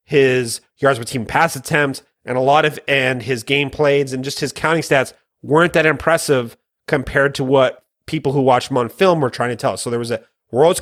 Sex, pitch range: male, 130-150 Hz